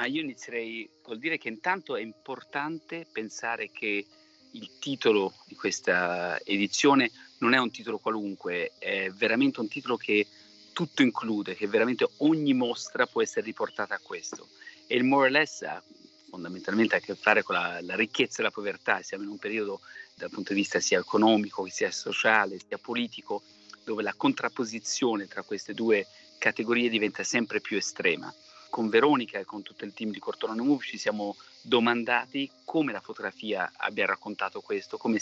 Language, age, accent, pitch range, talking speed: Italian, 40-59, native, 105-160 Hz, 170 wpm